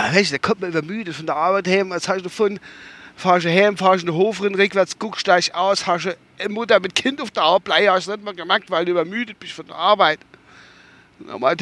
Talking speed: 225 wpm